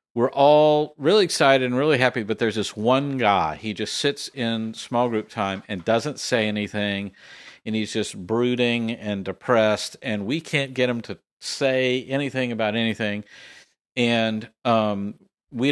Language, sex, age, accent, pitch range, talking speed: English, male, 50-69, American, 115-135 Hz, 160 wpm